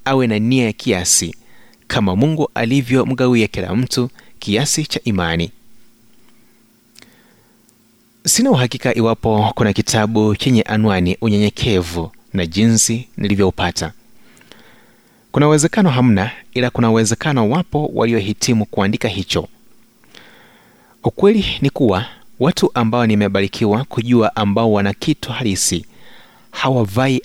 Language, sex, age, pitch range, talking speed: Swahili, male, 30-49, 105-130 Hz, 100 wpm